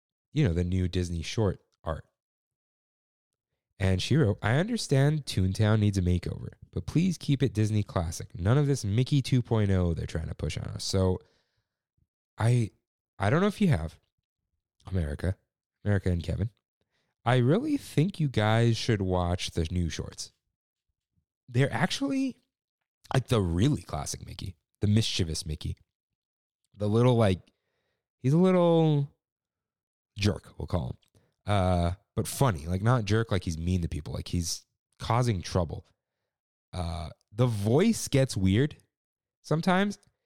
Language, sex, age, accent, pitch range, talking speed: English, male, 30-49, American, 90-125 Hz, 145 wpm